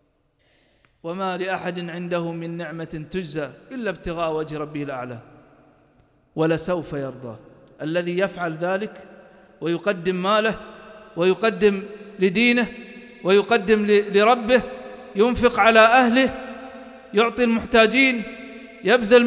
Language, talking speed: English, 85 wpm